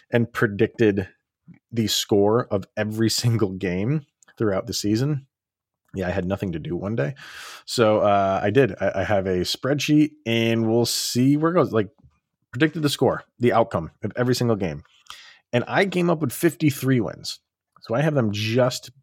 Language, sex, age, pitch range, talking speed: English, male, 30-49, 95-120 Hz, 175 wpm